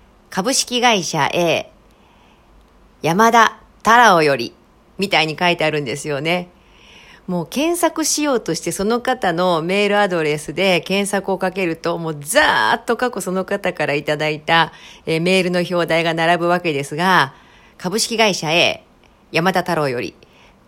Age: 40-59